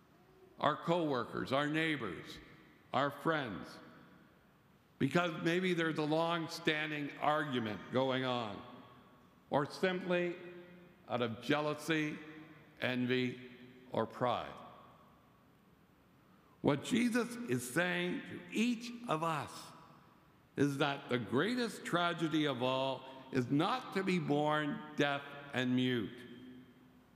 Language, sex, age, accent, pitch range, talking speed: English, male, 60-79, American, 125-170 Hz, 100 wpm